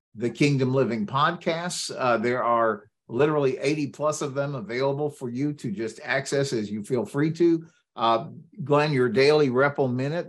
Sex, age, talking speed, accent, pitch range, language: male, 60-79, 170 wpm, American, 125-150 Hz, English